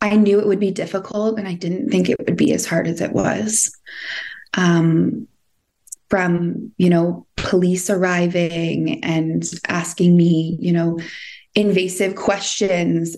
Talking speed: 140 wpm